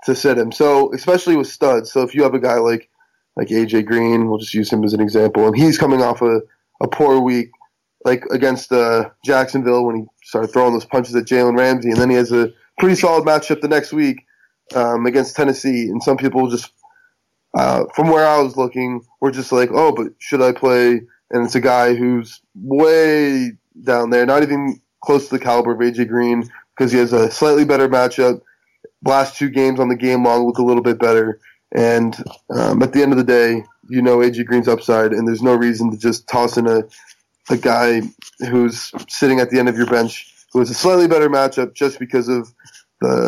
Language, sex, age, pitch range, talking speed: English, male, 20-39, 120-140 Hz, 215 wpm